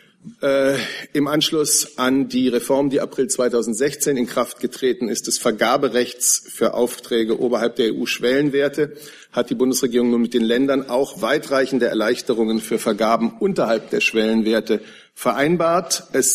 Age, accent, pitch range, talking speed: 50-69, German, 120-140 Hz, 135 wpm